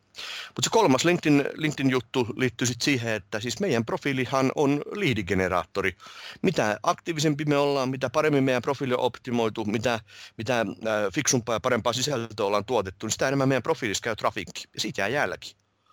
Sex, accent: male, native